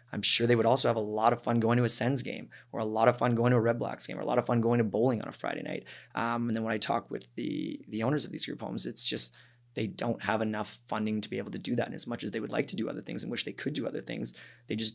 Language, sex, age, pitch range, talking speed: English, male, 20-39, 110-120 Hz, 340 wpm